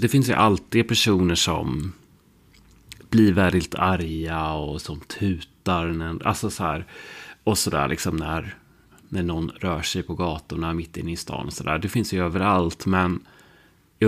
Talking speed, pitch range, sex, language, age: 170 wpm, 85-105 Hz, male, Swedish, 30-49